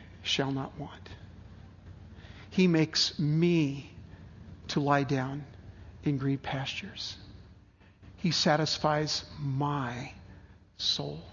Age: 50-69